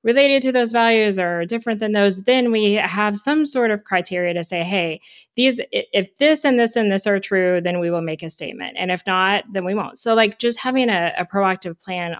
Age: 20-39